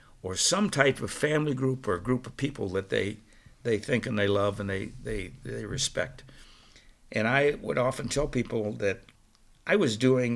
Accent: American